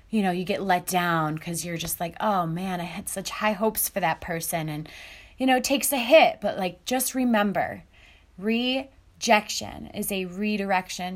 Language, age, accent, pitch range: English, 20-39, American, 165-215 Hz